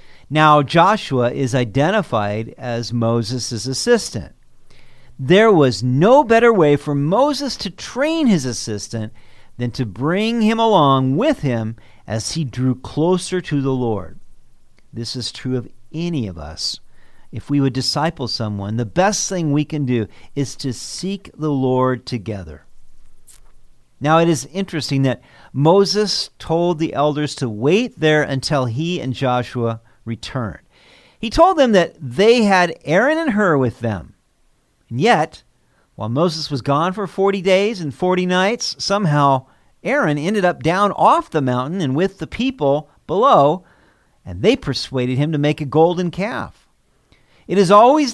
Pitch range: 120-180 Hz